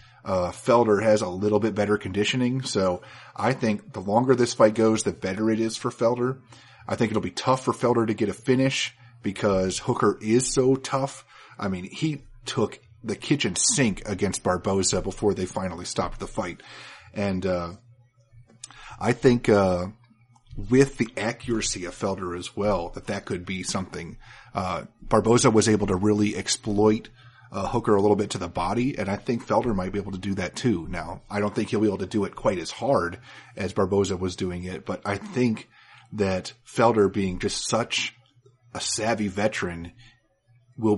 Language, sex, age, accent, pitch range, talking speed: English, male, 30-49, American, 100-120 Hz, 185 wpm